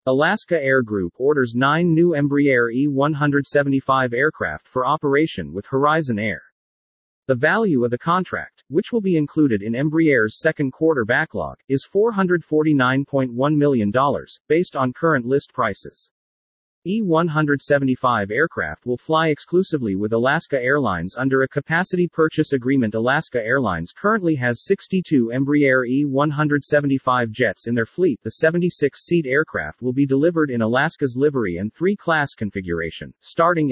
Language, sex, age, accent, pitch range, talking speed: English, male, 40-59, American, 125-160 Hz, 130 wpm